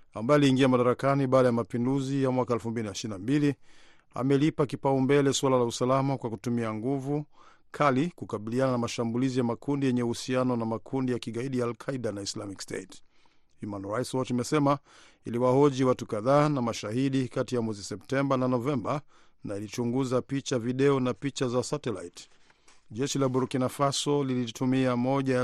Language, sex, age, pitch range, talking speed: Swahili, male, 50-69, 120-140 Hz, 150 wpm